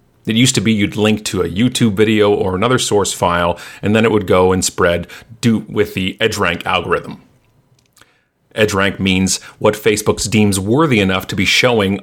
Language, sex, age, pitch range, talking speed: English, male, 40-59, 95-130 Hz, 175 wpm